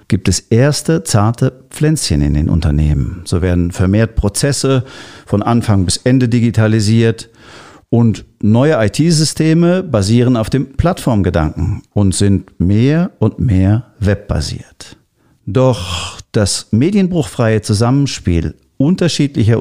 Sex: male